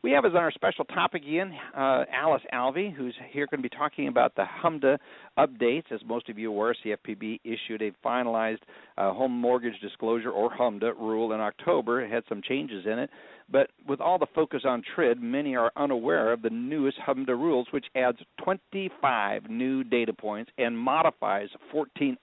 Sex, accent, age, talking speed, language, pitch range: male, American, 50-69, 185 wpm, English, 105-140 Hz